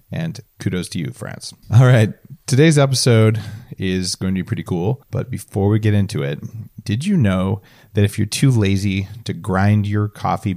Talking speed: 185 wpm